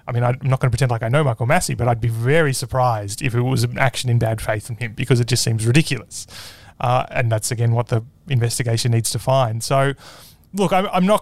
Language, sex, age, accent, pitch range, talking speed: English, male, 30-49, Australian, 125-150 Hz, 250 wpm